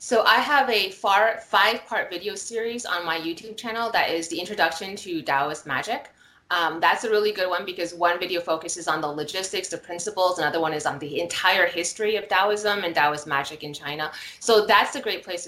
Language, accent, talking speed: English, American, 200 wpm